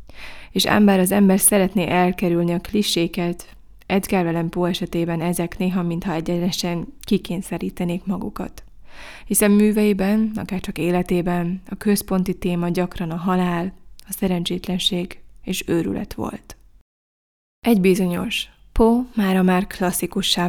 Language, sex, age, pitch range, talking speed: Hungarian, female, 20-39, 175-195 Hz, 120 wpm